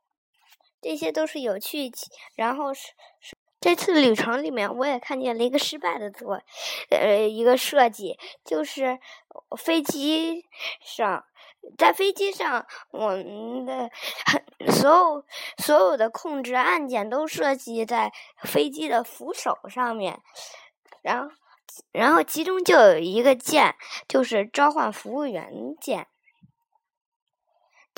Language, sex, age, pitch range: Chinese, male, 20-39, 230-305 Hz